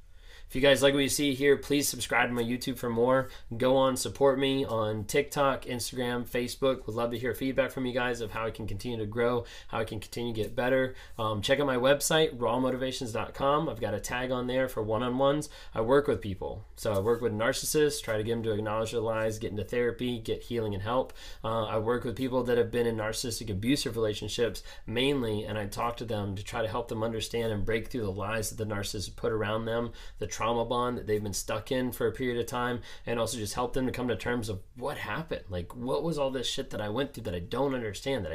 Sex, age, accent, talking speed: male, 20-39, American, 245 wpm